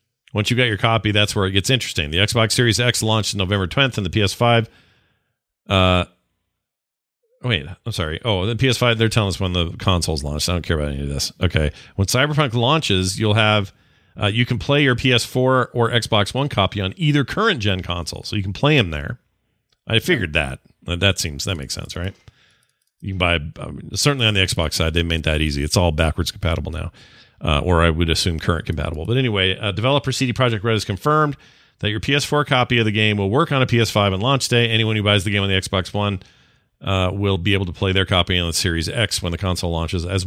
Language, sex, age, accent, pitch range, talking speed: English, male, 40-59, American, 90-120 Hz, 230 wpm